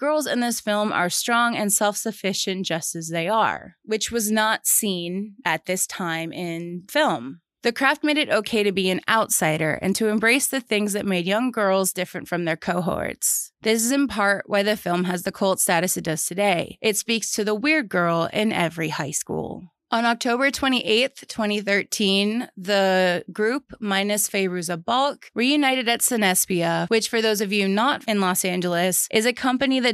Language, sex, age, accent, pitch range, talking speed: English, female, 20-39, American, 180-235 Hz, 185 wpm